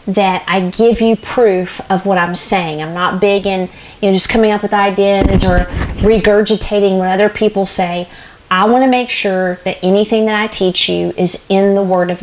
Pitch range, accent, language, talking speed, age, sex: 185-225 Hz, American, English, 205 wpm, 40-59, female